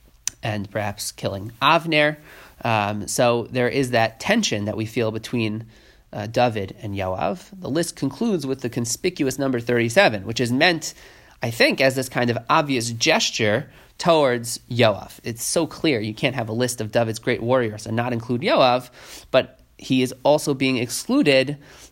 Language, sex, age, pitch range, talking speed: English, male, 30-49, 115-140 Hz, 165 wpm